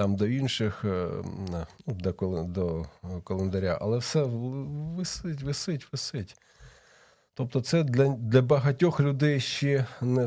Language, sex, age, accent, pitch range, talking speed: Ukrainian, male, 40-59, native, 105-145 Hz, 105 wpm